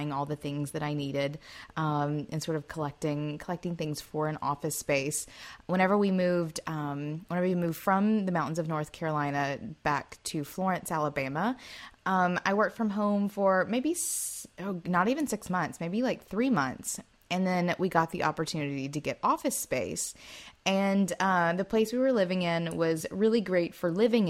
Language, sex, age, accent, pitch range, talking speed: English, female, 20-39, American, 155-200 Hz, 180 wpm